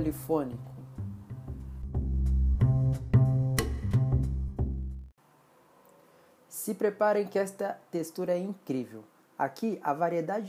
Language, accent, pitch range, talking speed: Portuguese, Brazilian, 145-200 Hz, 65 wpm